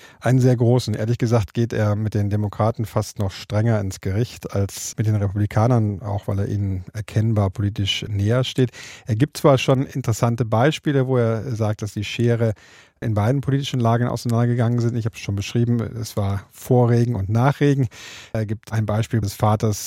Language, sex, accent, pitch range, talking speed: German, male, German, 105-120 Hz, 185 wpm